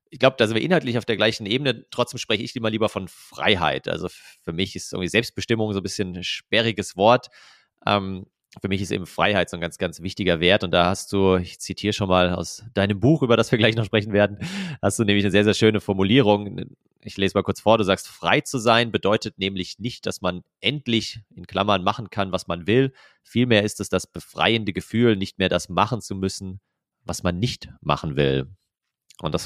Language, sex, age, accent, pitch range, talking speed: German, male, 30-49, German, 90-115 Hz, 220 wpm